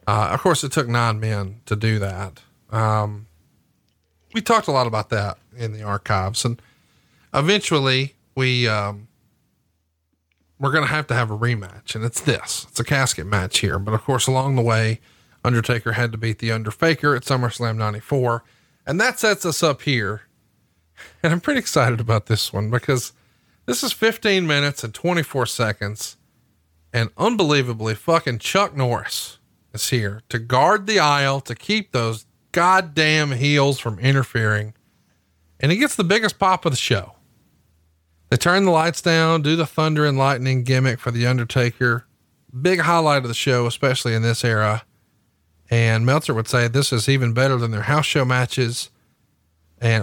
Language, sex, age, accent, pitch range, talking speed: English, male, 40-59, American, 110-140 Hz, 170 wpm